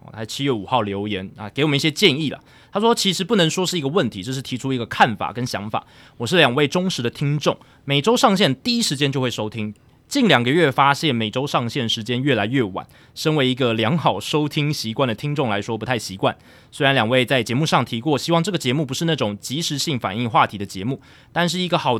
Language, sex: Chinese, male